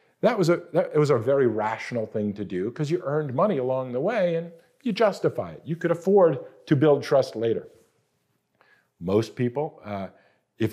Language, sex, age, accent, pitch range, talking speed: English, male, 50-69, American, 120-165 Hz, 190 wpm